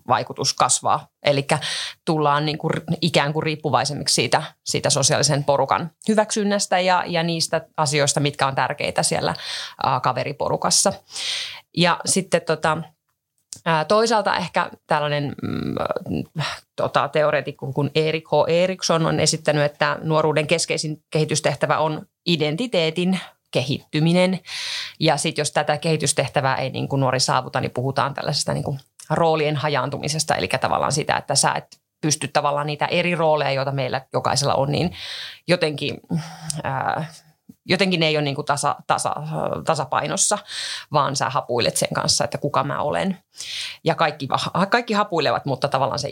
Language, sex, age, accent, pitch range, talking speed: Finnish, female, 30-49, native, 145-170 Hz, 135 wpm